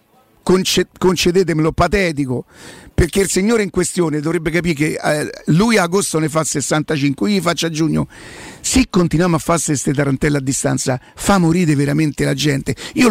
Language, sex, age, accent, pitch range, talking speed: Italian, male, 50-69, native, 155-200 Hz, 160 wpm